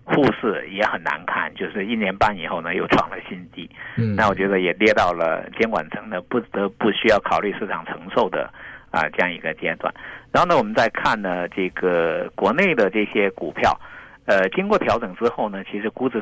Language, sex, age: Chinese, male, 50-69